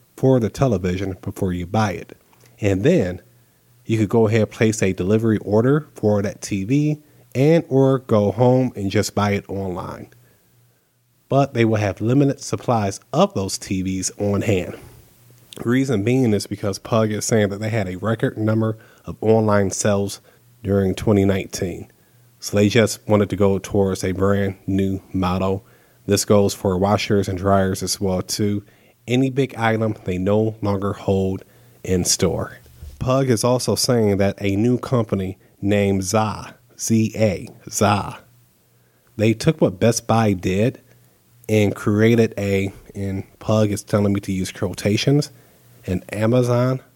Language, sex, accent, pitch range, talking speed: English, male, American, 100-120 Hz, 150 wpm